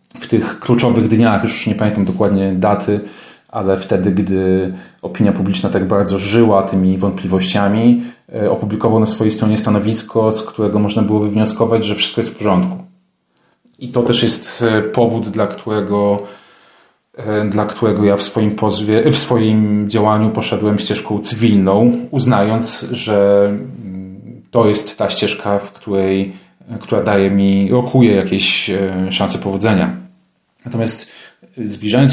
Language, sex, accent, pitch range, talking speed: Polish, male, native, 100-115 Hz, 130 wpm